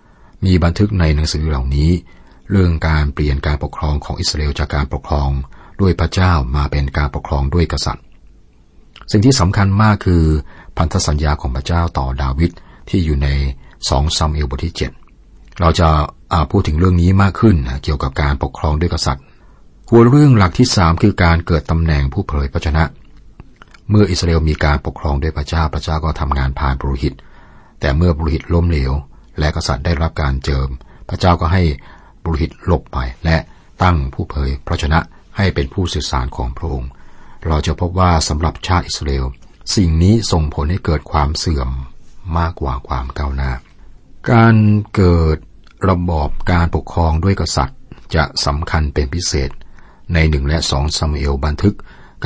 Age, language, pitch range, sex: 60-79, Thai, 70-90 Hz, male